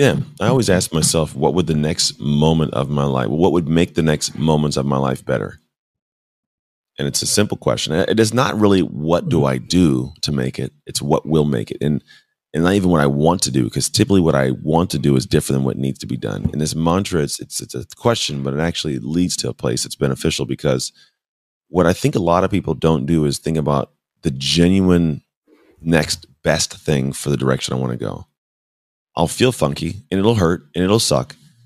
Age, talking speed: 30-49, 225 wpm